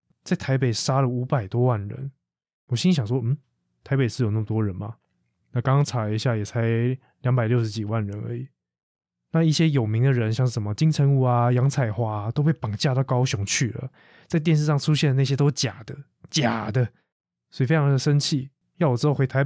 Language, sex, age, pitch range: Chinese, male, 20-39, 115-145 Hz